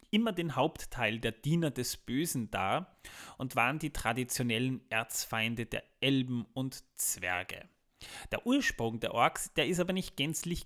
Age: 30-49